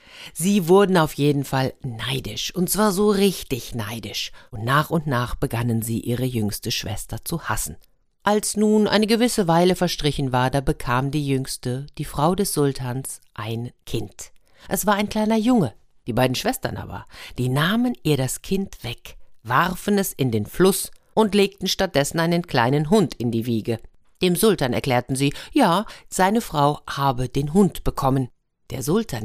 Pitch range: 120-180 Hz